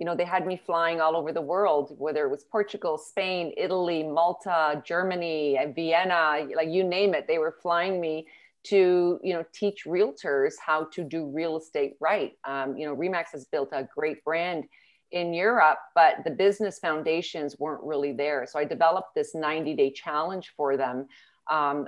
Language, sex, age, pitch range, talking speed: English, female, 40-59, 155-200 Hz, 180 wpm